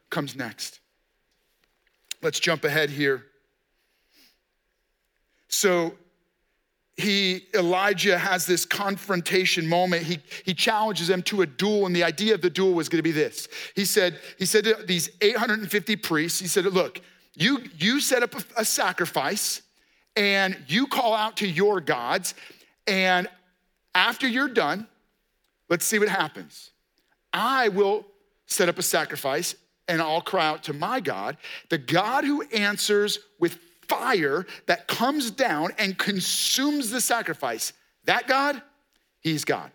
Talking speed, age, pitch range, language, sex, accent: 140 wpm, 40-59, 175-220 Hz, English, male, American